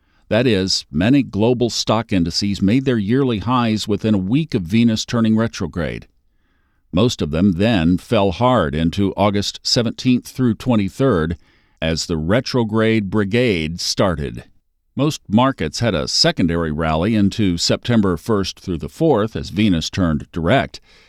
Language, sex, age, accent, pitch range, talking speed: English, male, 50-69, American, 90-120 Hz, 140 wpm